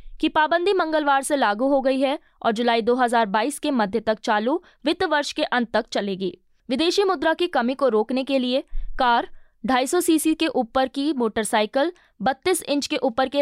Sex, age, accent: female, 20-39, native